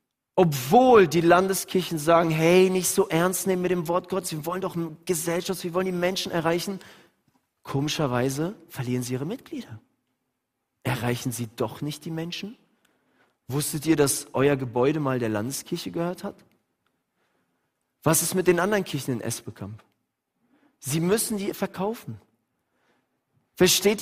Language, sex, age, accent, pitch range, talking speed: German, male, 40-59, German, 165-225 Hz, 140 wpm